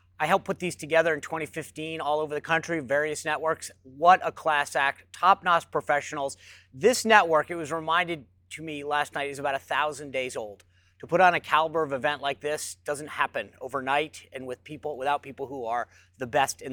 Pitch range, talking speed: 120-155 Hz, 195 wpm